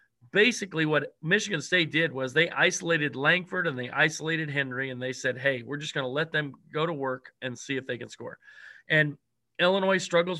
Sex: male